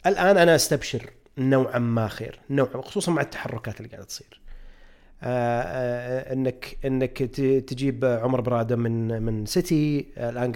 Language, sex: Arabic, male